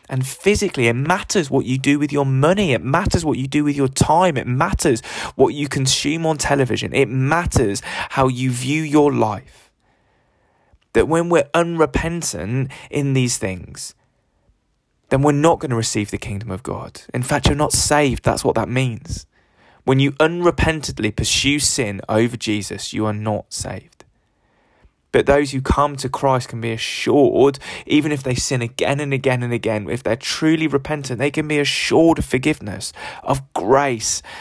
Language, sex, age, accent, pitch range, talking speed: English, male, 20-39, British, 110-140 Hz, 175 wpm